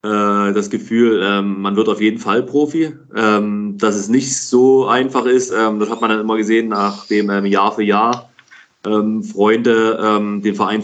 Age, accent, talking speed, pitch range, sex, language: 20-39, German, 150 wpm, 100-115 Hz, male, German